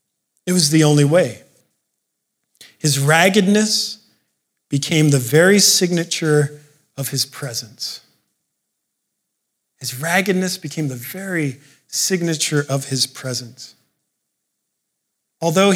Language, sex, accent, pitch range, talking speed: English, male, American, 145-195 Hz, 90 wpm